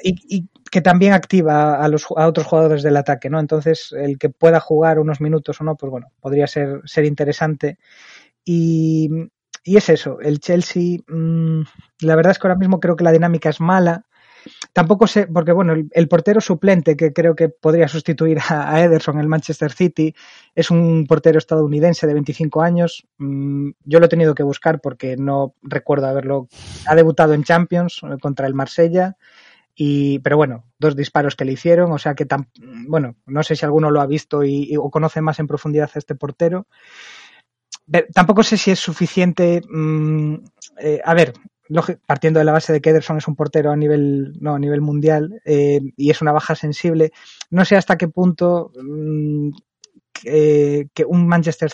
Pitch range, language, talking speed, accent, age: 150-170 Hz, Spanish, 190 wpm, Spanish, 20-39